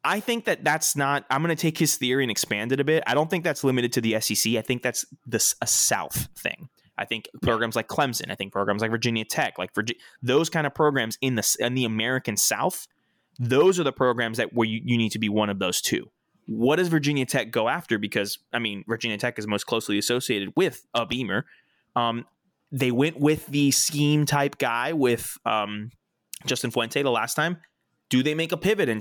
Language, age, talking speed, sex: English, 20-39, 225 wpm, male